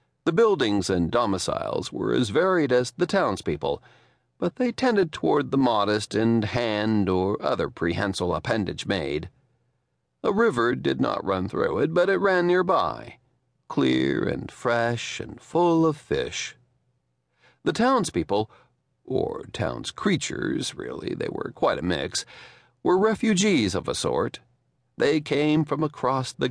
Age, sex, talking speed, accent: 40-59, male, 140 wpm, American